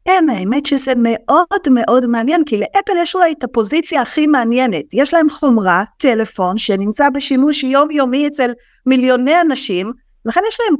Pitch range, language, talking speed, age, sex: 210-275 Hz, Hebrew, 155 wpm, 30-49, female